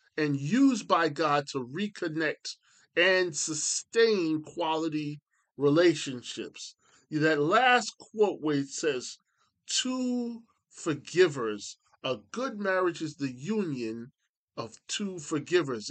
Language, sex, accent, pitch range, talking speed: English, male, American, 145-210 Hz, 100 wpm